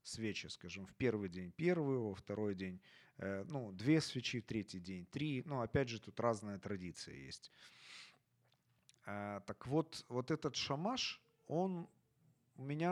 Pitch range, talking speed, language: 110-145 Hz, 150 wpm, Ukrainian